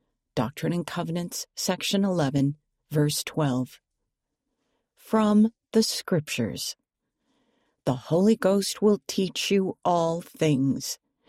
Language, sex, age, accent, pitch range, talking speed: English, female, 50-69, American, 150-210 Hz, 95 wpm